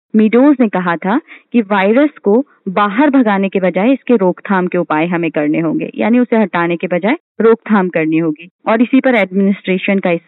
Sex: female